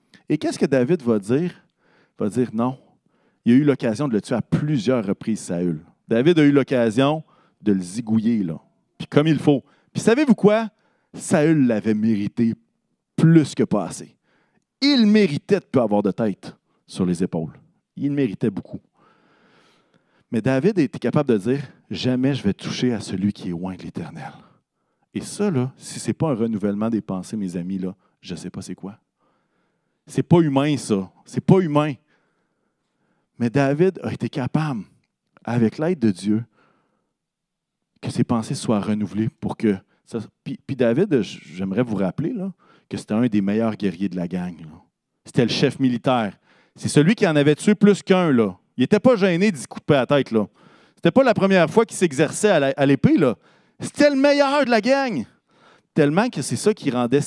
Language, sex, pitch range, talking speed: French, male, 110-180 Hz, 190 wpm